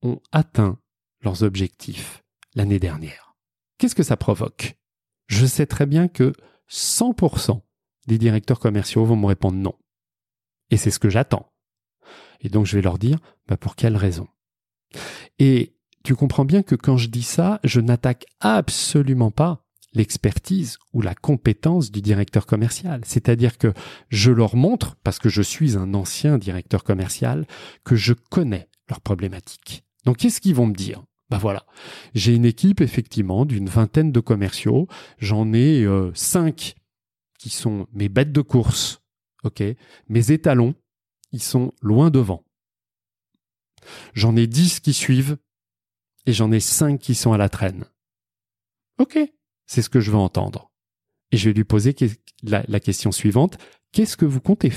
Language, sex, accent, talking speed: French, male, French, 155 wpm